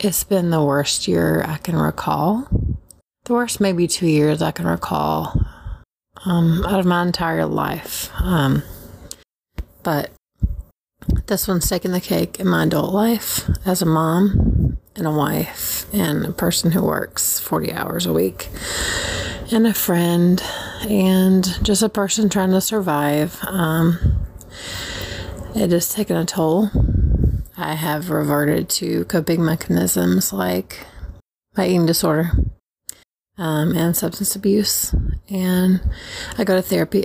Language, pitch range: English, 145-195 Hz